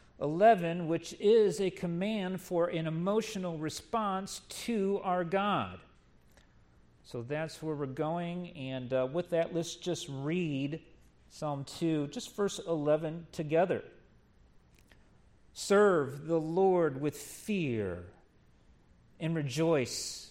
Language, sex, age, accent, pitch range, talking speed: English, male, 50-69, American, 135-175 Hz, 110 wpm